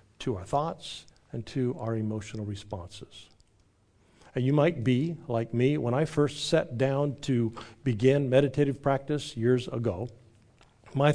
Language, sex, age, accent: English, male, 50-69, American